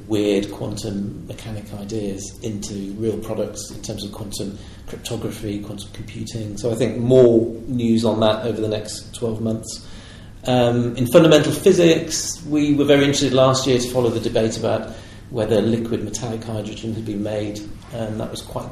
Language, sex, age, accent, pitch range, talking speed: English, male, 40-59, British, 105-120 Hz, 165 wpm